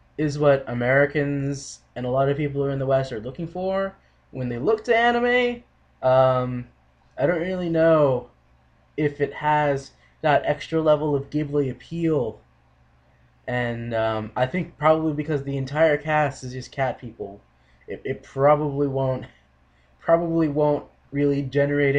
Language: English